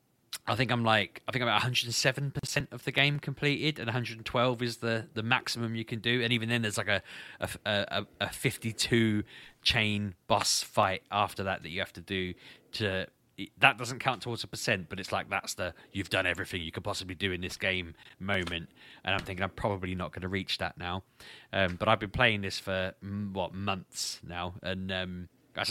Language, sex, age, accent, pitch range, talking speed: English, male, 20-39, British, 95-115 Hz, 205 wpm